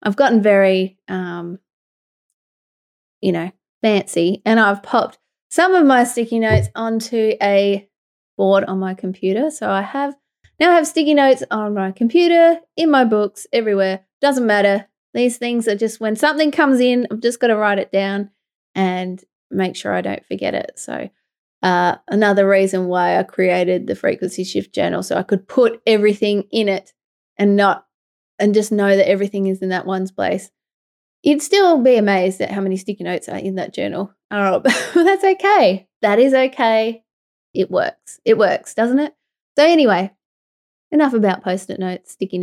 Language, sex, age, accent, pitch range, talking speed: English, female, 20-39, Australian, 195-250 Hz, 175 wpm